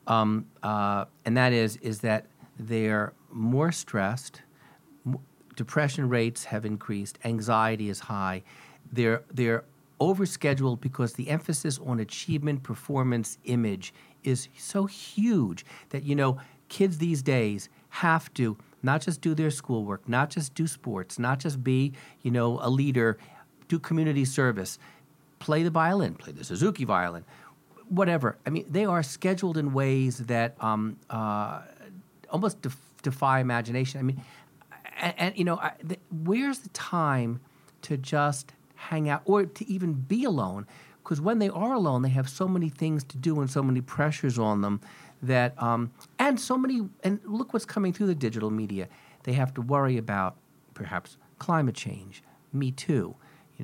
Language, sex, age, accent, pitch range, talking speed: English, male, 50-69, American, 120-160 Hz, 160 wpm